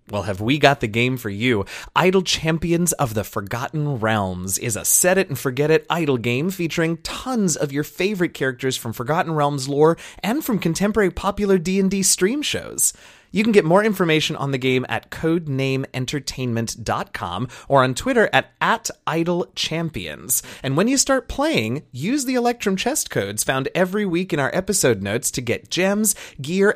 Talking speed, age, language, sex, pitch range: 165 wpm, 30-49, English, male, 115-180 Hz